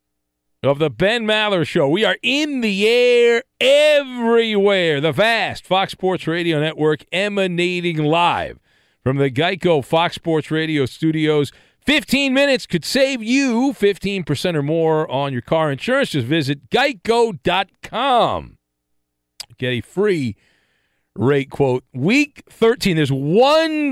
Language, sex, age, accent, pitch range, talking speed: English, male, 40-59, American, 135-205 Hz, 125 wpm